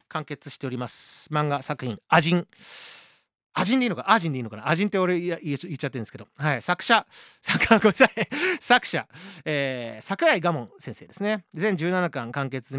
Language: Japanese